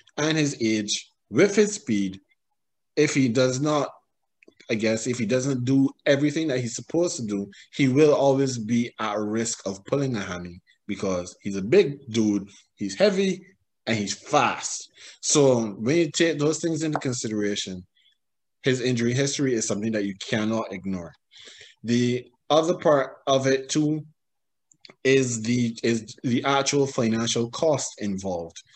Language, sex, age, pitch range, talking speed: English, male, 20-39, 110-150 Hz, 150 wpm